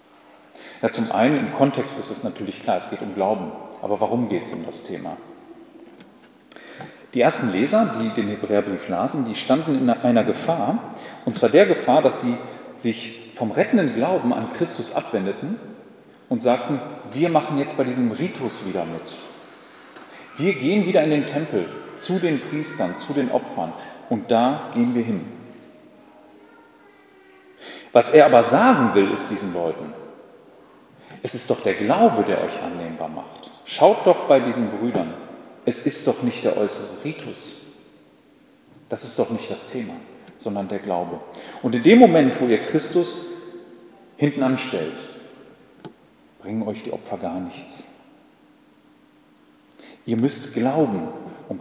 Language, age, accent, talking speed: German, 40-59, German, 150 wpm